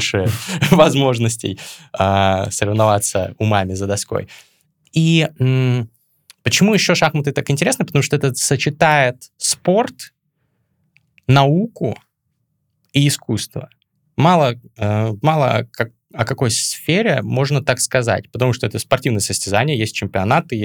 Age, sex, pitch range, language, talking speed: 20-39, male, 100-135 Hz, Russian, 110 wpm